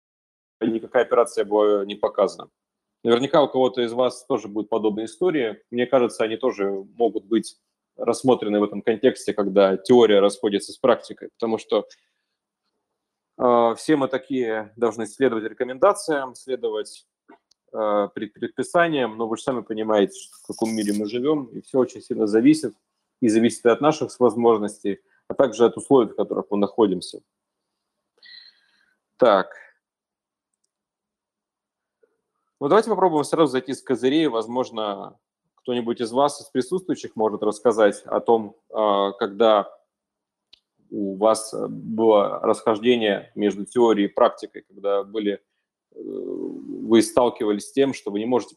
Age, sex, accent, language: 30-49, male, native, Russian